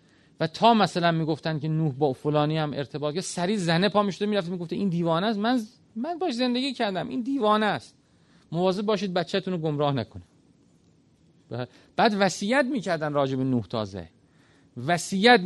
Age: 30-49